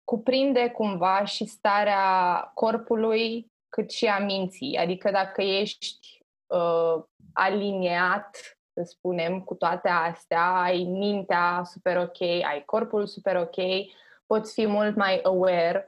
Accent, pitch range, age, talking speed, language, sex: native, 180-225 Hz, 20-39, 120 wpm, Romanian, female